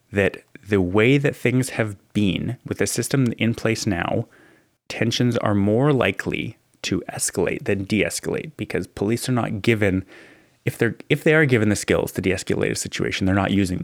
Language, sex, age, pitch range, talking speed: English, male, 30-49, 95-115 Hz, 180 wpm